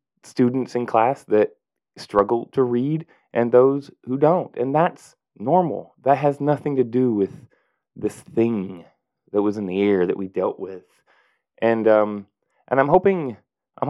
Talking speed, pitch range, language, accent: 160 wpm, 95-125 Hz, English, American